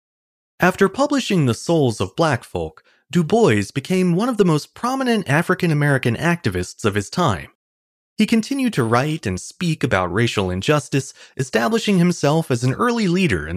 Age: 30-49